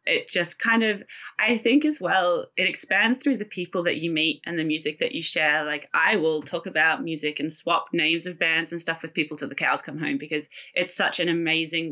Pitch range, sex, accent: 155-180 Hz, female, Australian